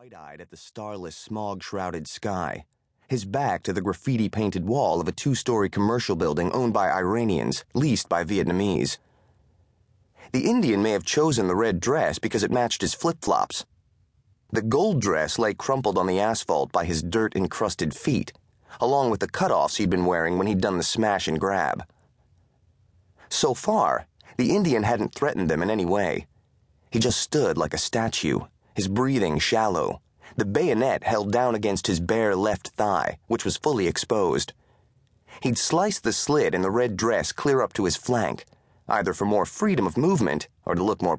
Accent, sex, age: American, male, 30-49